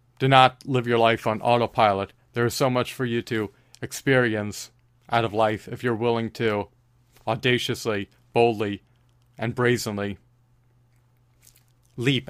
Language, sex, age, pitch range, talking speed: English, male, 40-59, 110-125 Hz, 130 wpm